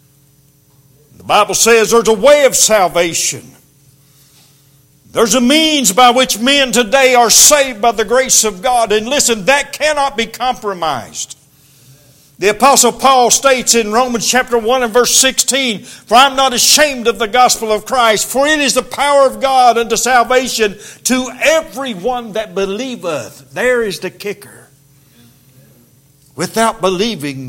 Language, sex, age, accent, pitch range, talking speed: English, male, 60-79, American, 155-255 Hz, 145 wpm